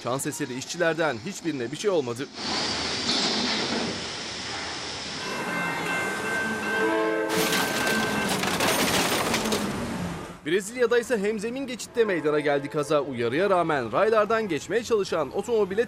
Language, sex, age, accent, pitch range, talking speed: Turkish, male, 30-49, native, 125-200 Hz, 80 wpm